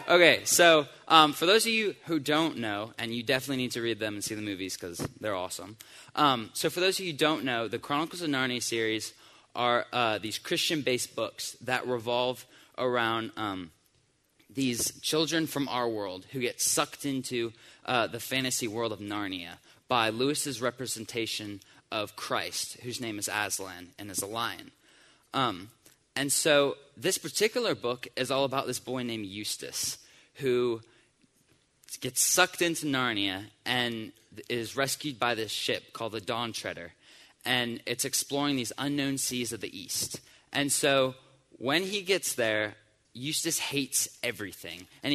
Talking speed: 160 wpm